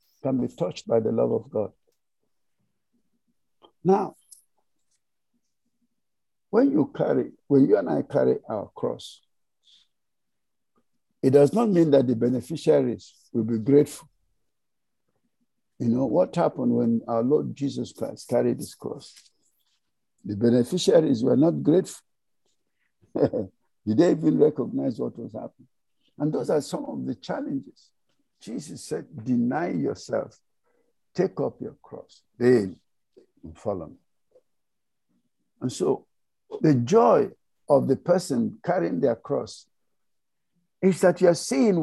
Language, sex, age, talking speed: English, male, 60-79, 125 wpm